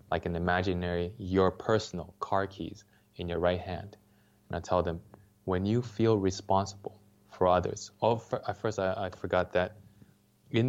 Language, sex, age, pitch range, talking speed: English, male, 20-39, 90-105 Hz, 165 wpm